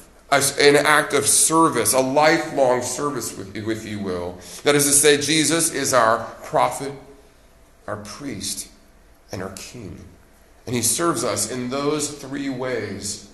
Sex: male